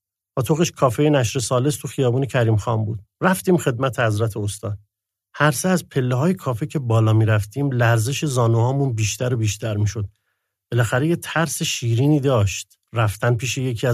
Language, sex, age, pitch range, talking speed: Persian, male, 50-69, 110-145 Hz, 165 wpm